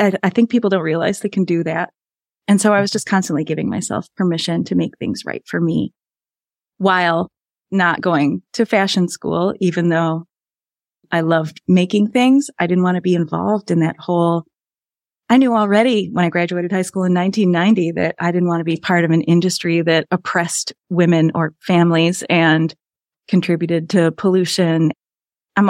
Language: English